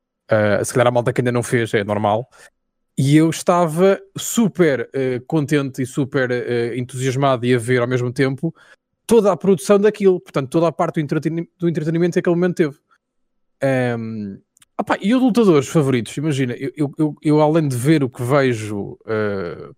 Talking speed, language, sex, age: 185 wpm, Portuguese, male, 20-39